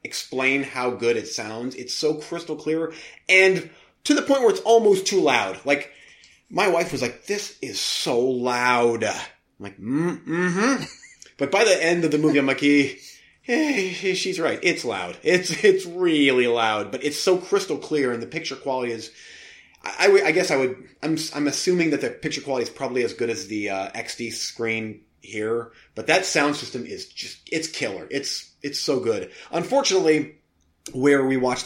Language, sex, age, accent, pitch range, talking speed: English, male, 30-49, American, 120-170 Hz, 185 wpm